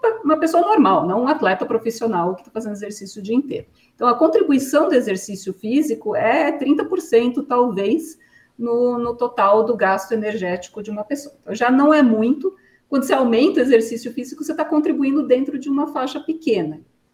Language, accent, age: Portuguese, Brazilian, 50-69